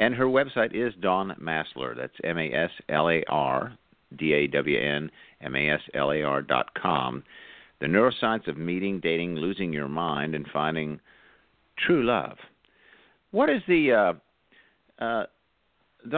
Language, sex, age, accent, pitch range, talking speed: English, male, 50-69, American, 75-110 Hz, 150 wpm